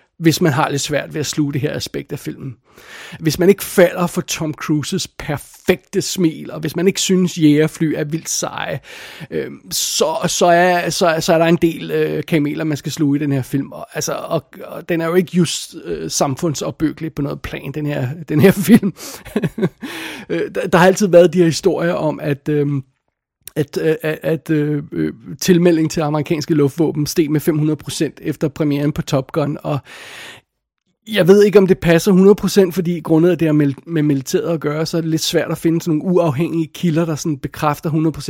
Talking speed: 205 wpm